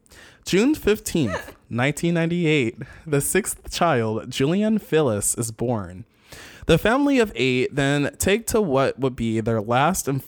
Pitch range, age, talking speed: 110-165 Hz, 20-39, 135 wpm